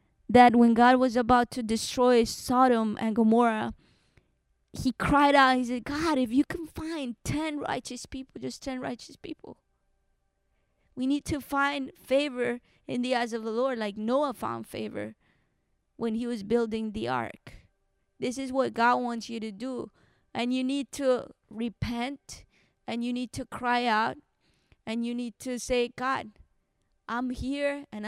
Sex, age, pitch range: female, 20-39, 215-255 Hz